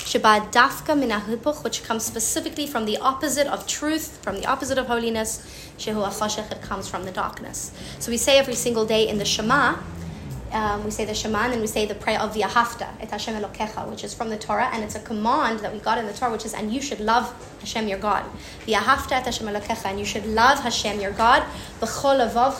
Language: English